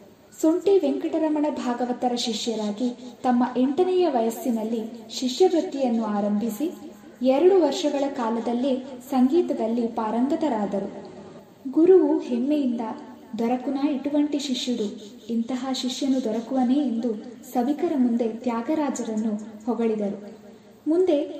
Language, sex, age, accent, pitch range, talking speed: Kannada, female, 20-39, native, 230-290 Hz, 80 wpm